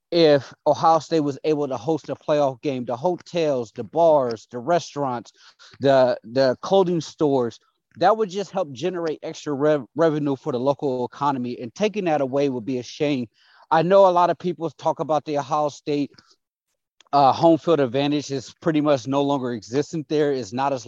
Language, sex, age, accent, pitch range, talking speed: English, male, 30-49, American, 140-170 Hz, 185 wpm